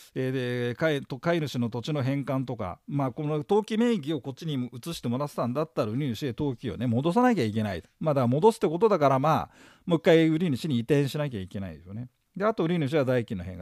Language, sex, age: Japanese, male, 40-59